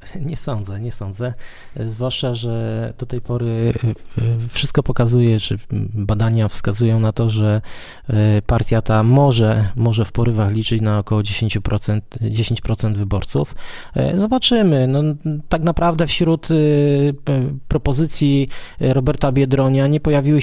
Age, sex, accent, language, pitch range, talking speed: 20-39, male, native, Polish, 115-140 Hz, 115 wpm